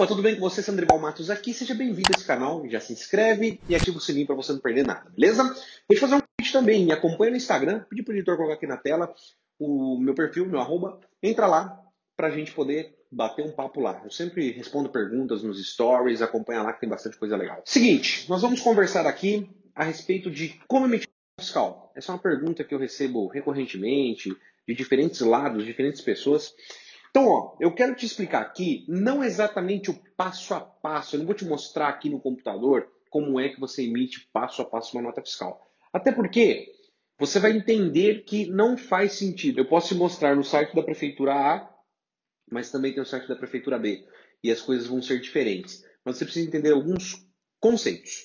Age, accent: 30-49, Brazilian